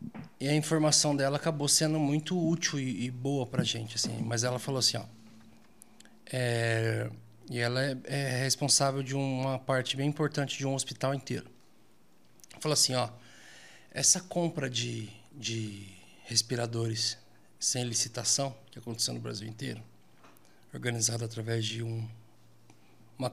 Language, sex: Portuguese, male